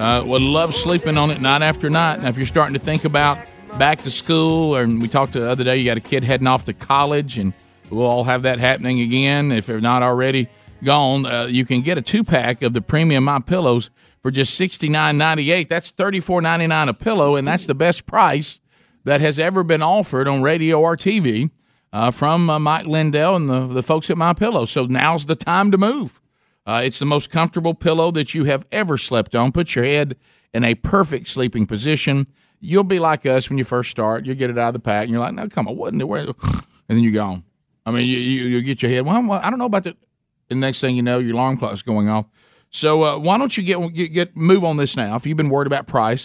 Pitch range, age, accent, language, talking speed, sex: 120-160 Hz, 50-69, American, English, 255 wpm, male